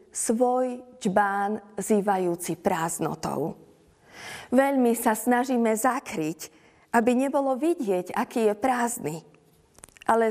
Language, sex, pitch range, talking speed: Slovak, female, 225-270 Hz, 85 wpm